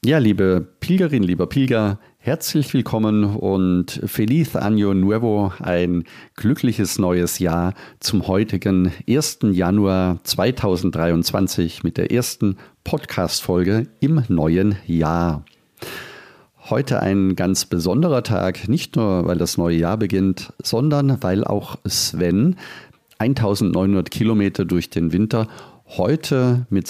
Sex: male